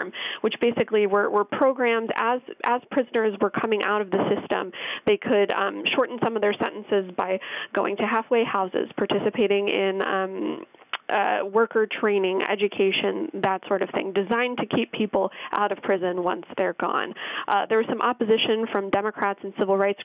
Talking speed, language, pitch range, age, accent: 170 wpm, English, 195-235 Hz, 20-39, American